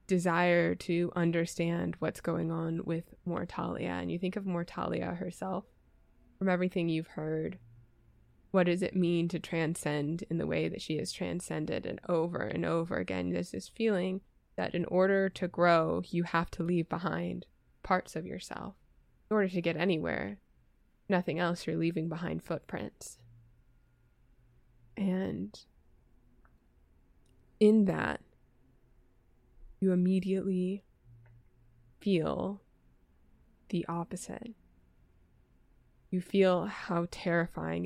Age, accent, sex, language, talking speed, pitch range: 20-39, American, female, English, 120 wpm, 155-180 Hz